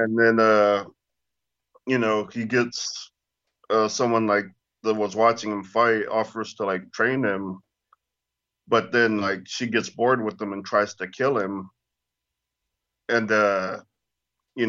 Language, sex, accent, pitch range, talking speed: English, male, American, 100-115 Hz, 145 wpm